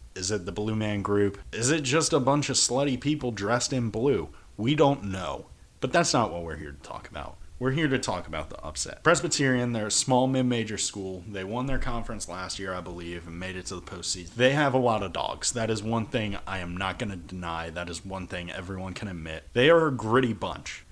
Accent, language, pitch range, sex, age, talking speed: American, English, 100-135 Hz, male, 30-49, 240 wpm